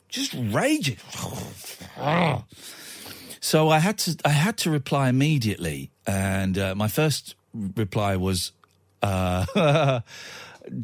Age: 40-59